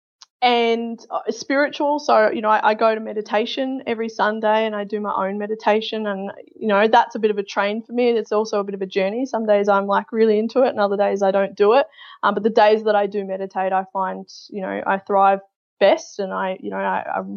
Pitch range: 195-230 Hz